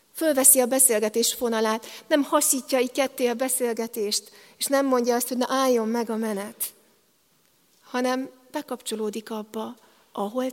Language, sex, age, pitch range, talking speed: Hungarian, female, 40-59, 225-260 Hz, 135 wpm